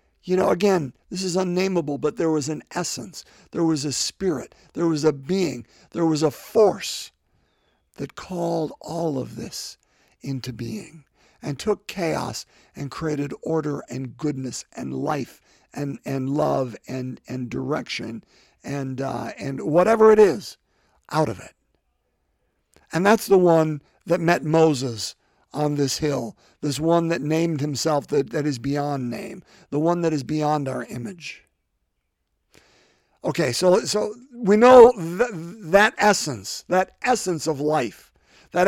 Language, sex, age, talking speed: English, male, 50-69, 145 wpm